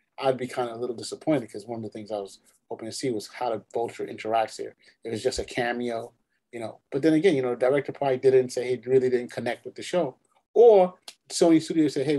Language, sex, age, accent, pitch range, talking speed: English, male, 30-49, American, 115-145 Hz, 255 wpm